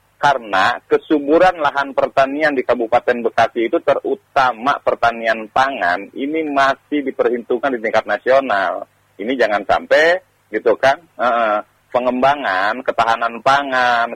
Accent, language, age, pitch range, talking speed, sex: native, Indonesian, 40-59, 115-145 Hz, 110 wpm, male